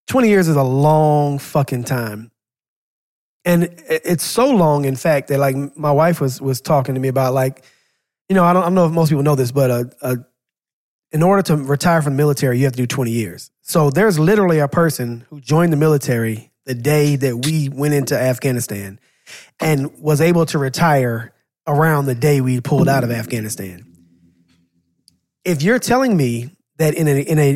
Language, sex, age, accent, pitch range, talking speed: English, male, 20-39, American, 130-170 Hz, 195 wpm